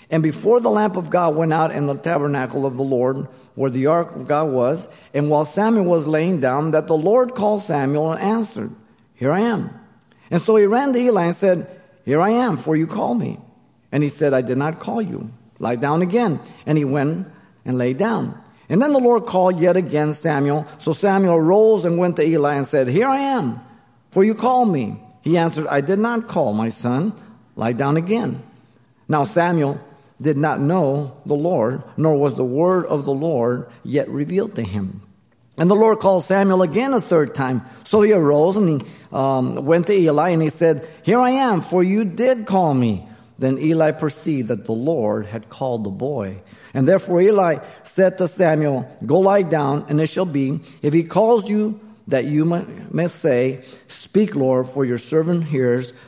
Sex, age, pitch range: male, 50-69, 130-185 Hz